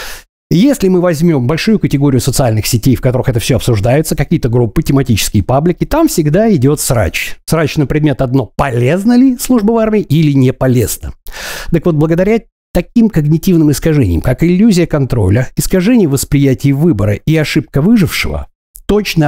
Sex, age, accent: male, 50-69, native